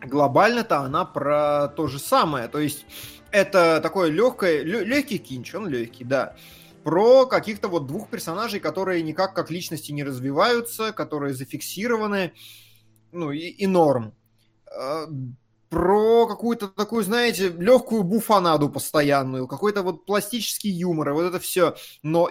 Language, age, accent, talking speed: Russian, 20-39, native, 125 wpm